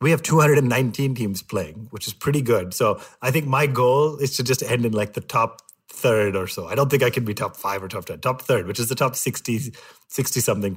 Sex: male